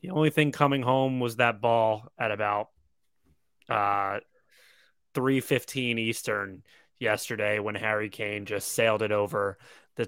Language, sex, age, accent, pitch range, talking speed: English, male, 20-39, American, 115-150 Hz, 130 wpm